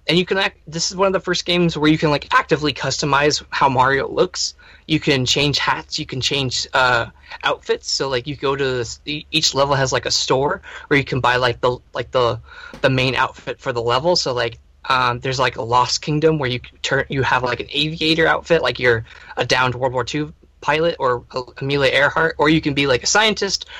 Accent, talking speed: American, 230 wpm